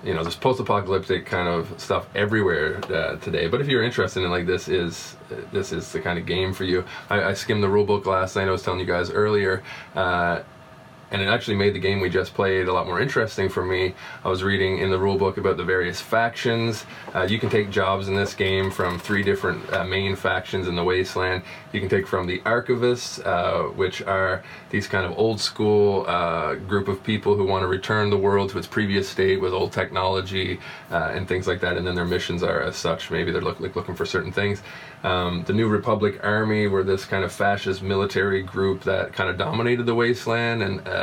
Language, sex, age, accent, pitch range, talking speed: English, male, 20-39, American, 95-110 Hz, 220 wpm